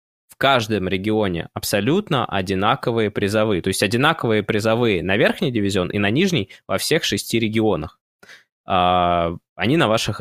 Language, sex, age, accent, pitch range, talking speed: Russian, male, 20-39, native, 95-130 Hz, 135 wpm